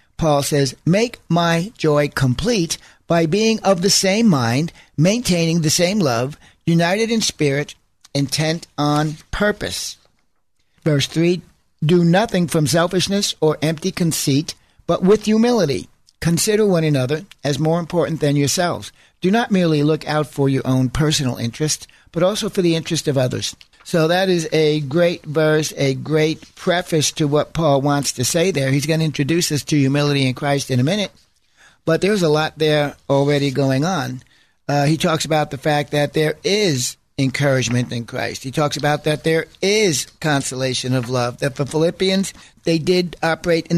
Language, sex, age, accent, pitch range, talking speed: English, male, 60-79, American, 145-175 Hz, 170 wpm